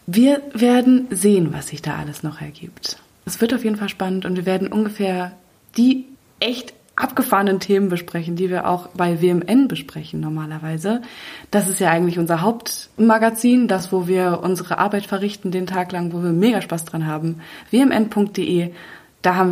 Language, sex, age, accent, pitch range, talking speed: German, female, 20-39, German, 175-230 Hz, 170 wpm